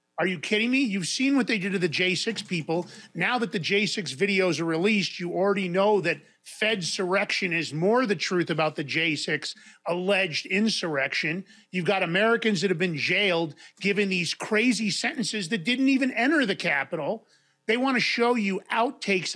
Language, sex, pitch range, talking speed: English, male, 160-210 Hz, 175 wpm